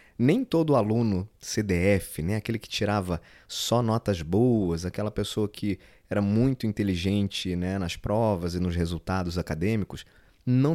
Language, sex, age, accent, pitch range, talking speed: Portuguese, male, 20-39, Brazilian, 90-120 Hz, 140 wpm